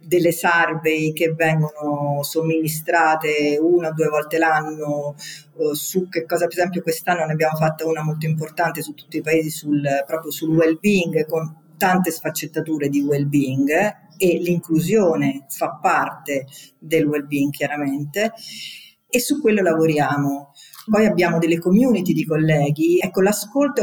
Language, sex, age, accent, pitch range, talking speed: Italian, female, 50-69, native, 160-190 Hz, 135 wpm